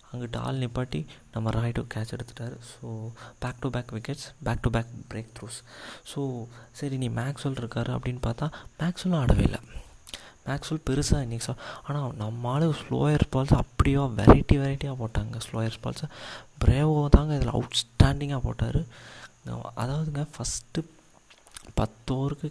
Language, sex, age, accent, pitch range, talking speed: Tamil, male, 20-39, native, 115-140 Hz, 140 wpm